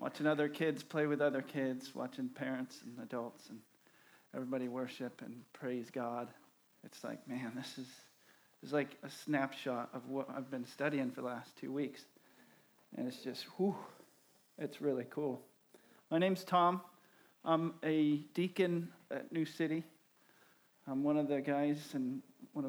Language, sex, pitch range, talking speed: English, male, 140-185 Hz, 160 wpm